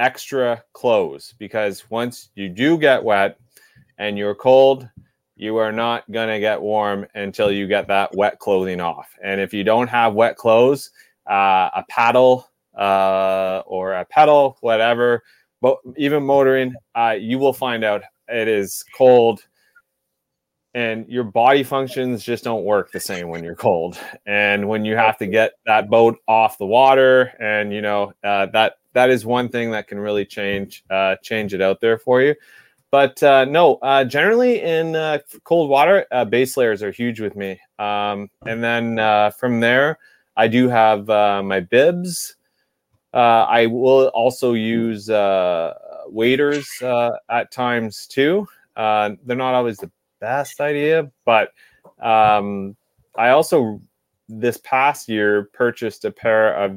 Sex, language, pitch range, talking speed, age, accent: male, English, 105-125 Hz, 160 wpm, 20-39, American